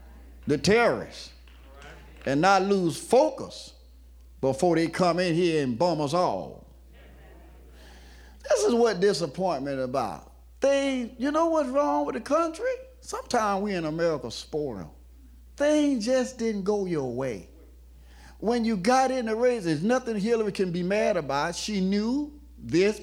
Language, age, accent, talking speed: English, 50-69, American, 145 wpm